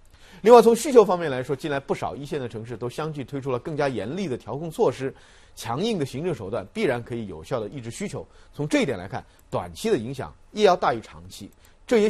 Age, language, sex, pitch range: 30-49, Chinese, male, 110-160 Hz